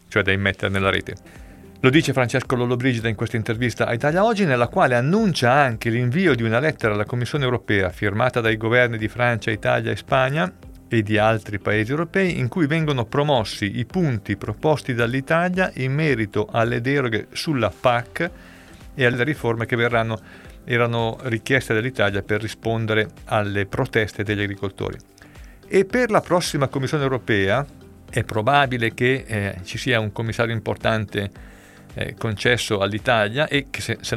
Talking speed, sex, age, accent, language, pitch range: 155 wpm, male, 50-69, native, Italian, 105-135 Hz